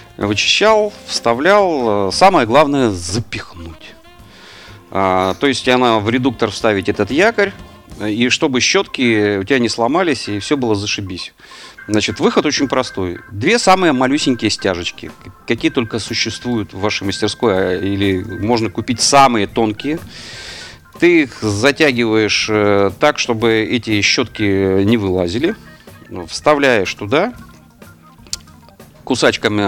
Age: 40-59